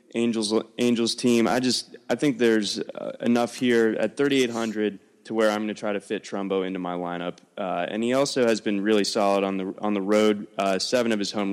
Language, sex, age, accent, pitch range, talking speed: English, male, 20-39, American, 100-120 Hz, 220 wpm